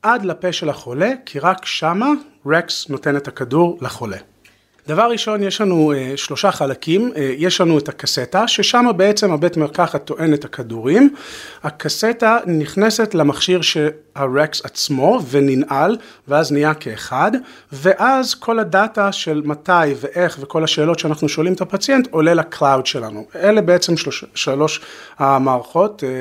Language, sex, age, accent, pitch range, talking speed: Hebrew, male, 40-59, native, 140-190 Hz, 135 wpm